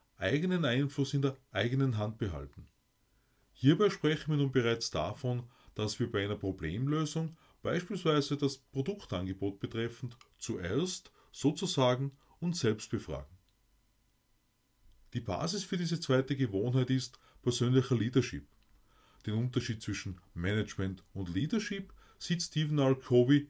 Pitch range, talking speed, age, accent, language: 110-145 Hz, 115 wpm, 30-49, Austrian, German